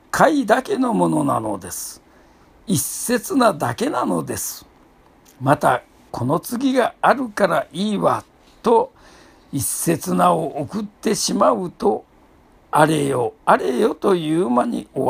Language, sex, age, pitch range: Japanese, male, 60-79, 140-220 Hz